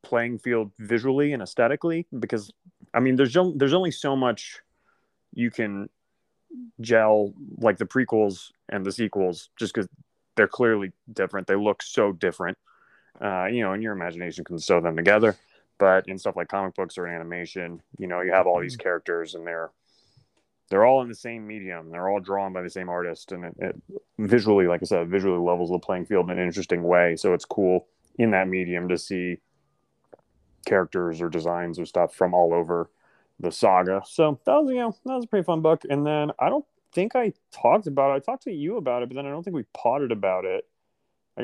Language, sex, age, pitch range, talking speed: English, male, 30-49, 95-145 Hz, 205 wpm